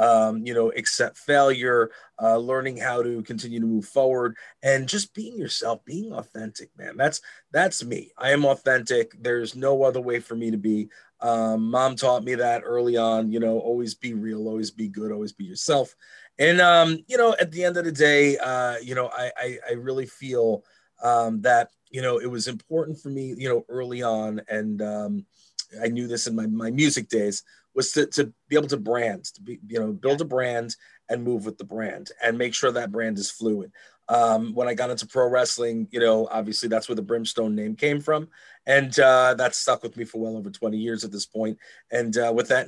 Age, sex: 30-49, male